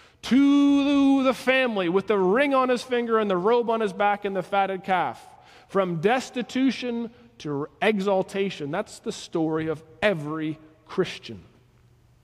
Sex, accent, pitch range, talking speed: male, American, 130-210 Hz, 140 wpm